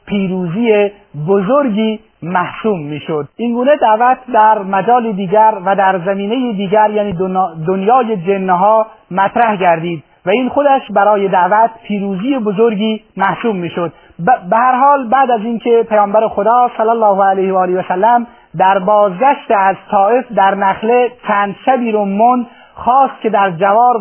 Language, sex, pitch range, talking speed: Persian, male, 195-235 Hz, 140 wpm